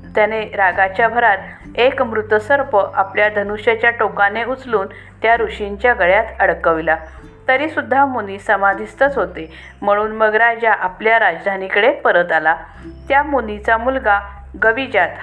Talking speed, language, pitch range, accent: 110 wpm, Marathi, 200-245 Hz, native